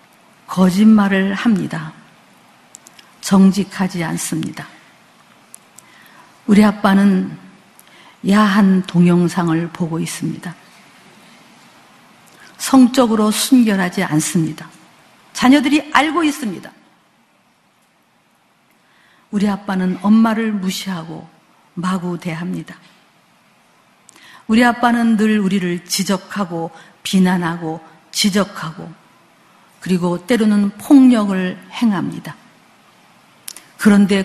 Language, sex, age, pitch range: Korean, female, 50-69, 180-235 Hz